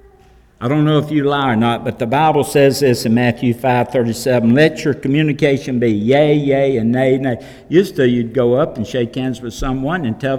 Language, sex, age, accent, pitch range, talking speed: English, male, 60-79, American, 115-175 Hz, 225 wpm